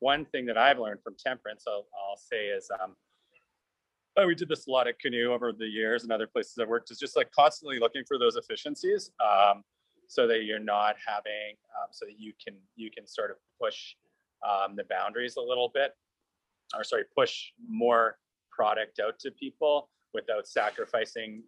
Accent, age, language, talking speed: American, 30-49, English, 190 wpm